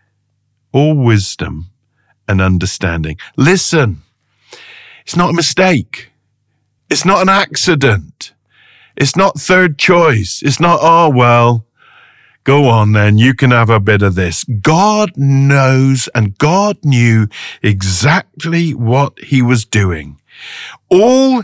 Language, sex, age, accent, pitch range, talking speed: English, male, 50-69, British, 110-175 Hz, 120 wpm